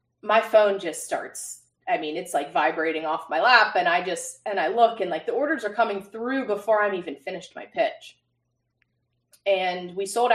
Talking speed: 195 wpm